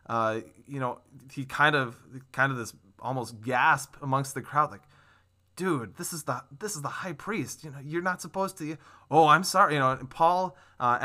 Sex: male